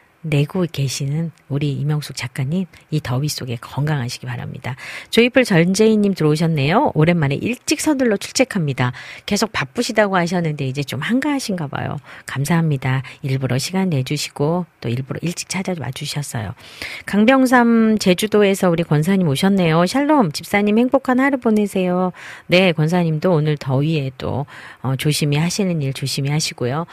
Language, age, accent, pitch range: Korean, 40-59, native, 140-190 Hz